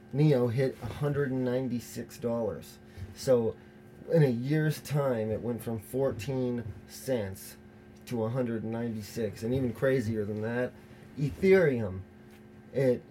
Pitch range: 110-135 Hz